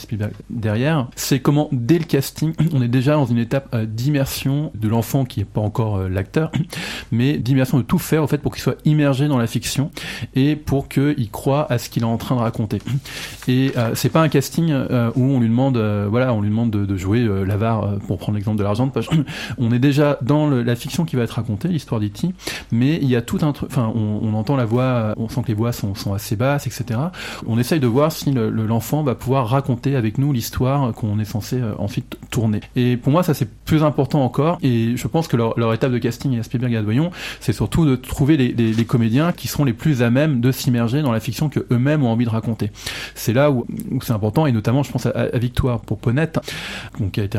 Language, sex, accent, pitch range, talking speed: French, male, French, 115-140 Hz, 245 wpm